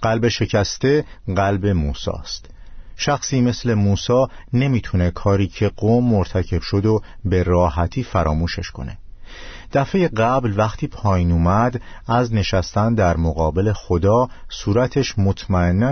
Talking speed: 115 wpm